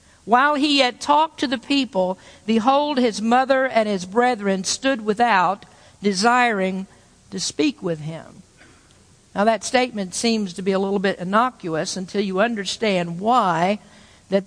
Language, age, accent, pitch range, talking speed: English, 50-69, American, 210-285 Hz, 145 wpm